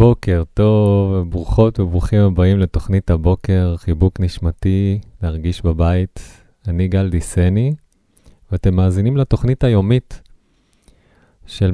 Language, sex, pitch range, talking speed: Hebrew, male, 90-105 Hz, 95 wpm